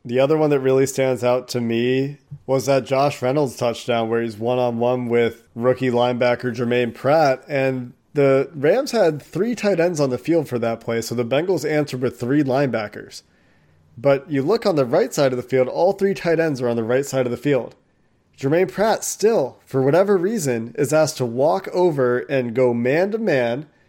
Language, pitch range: English, 125-155 Hz